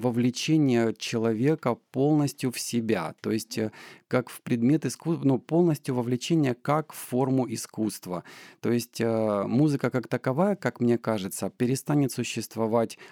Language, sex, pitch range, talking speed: Ukrainian, male, 105-125 Hz, 135 wpm